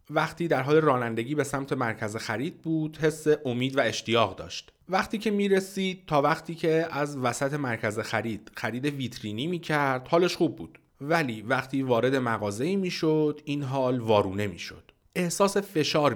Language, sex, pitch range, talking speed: Persian, male, 110-150 Hz, 155 wpm